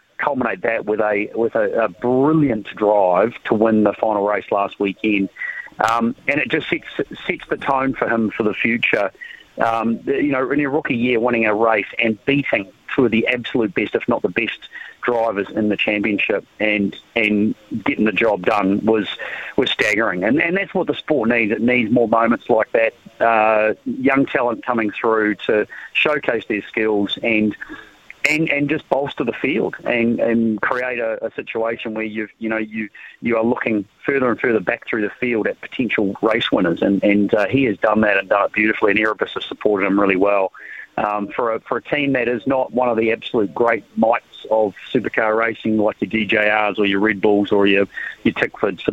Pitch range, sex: 105-115 Hz, male